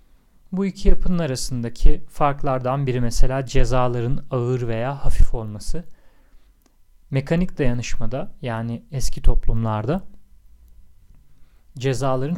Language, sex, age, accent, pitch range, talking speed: Turkish, male, 40-59, native, 115-140 Hz, 85 wpm